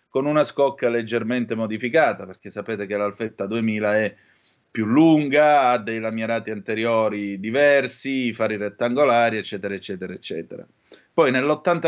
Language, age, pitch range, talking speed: Italian, 30-49, 110-130 Hz, 125 wpm